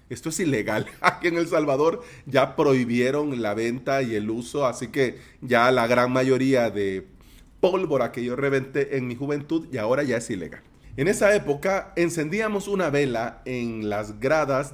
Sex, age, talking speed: male, 40-59, 170 wpm